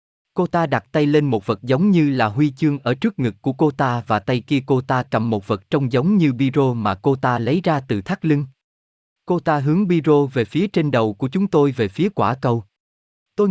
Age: 20-39